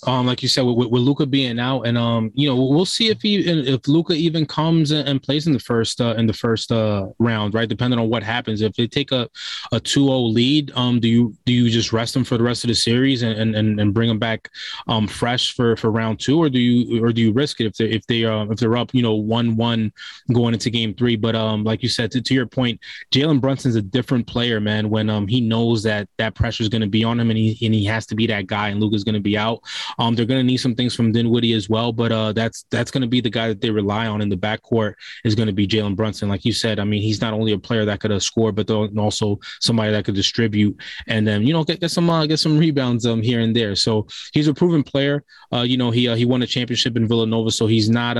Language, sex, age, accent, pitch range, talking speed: English, male, 20-39, American, 110-125 Hz, 275 wpm